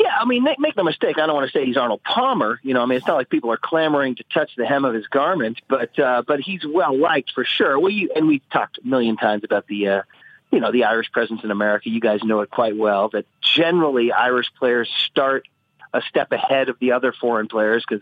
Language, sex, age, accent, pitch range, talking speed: English, male, 40-59, American, 115-155 Hz, 255 wpm